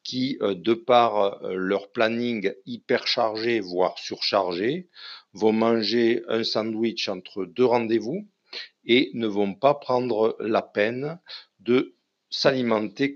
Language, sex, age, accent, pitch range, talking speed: French, male, 50-69, French, 105-125 Hz, 110 wpm